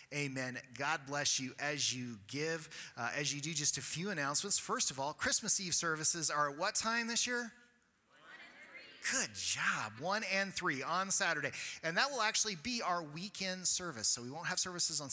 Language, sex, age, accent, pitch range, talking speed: English, male, 30-49, American, 125-175 Hz, 190 wpm